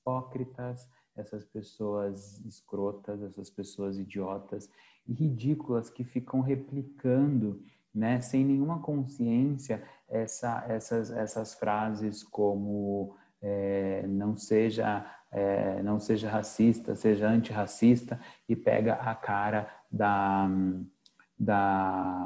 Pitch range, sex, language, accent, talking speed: 110-145 Hz, male, Portuguese, Brazilian, 95 wpm